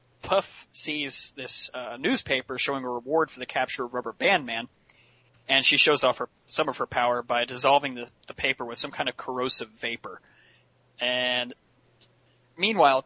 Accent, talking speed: American, 170 wpm